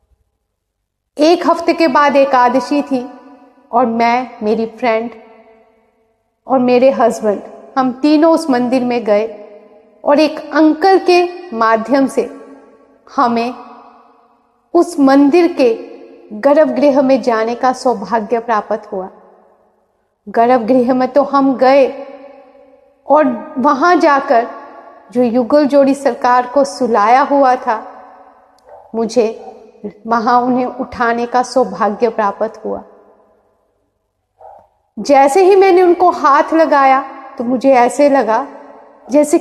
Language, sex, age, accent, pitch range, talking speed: Hindi, female, 40-59, native, 240-310 Hz, 105 wpm